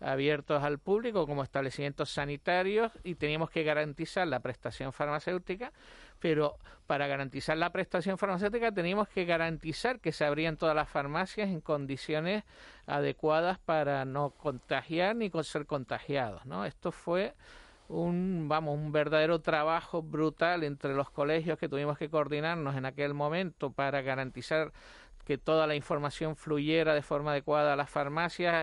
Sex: male